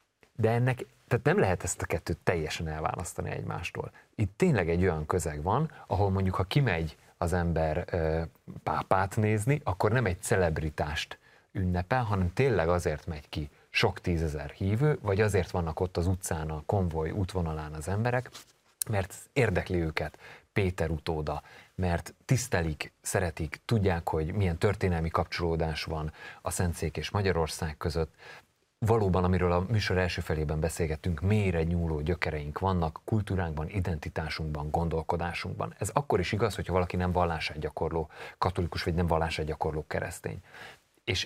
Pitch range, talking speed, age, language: 80-100 Hz, 145 wpm, 30-49, Hungarian